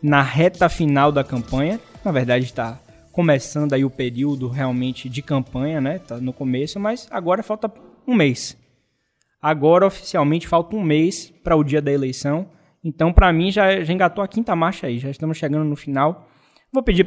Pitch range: 135-175 Hz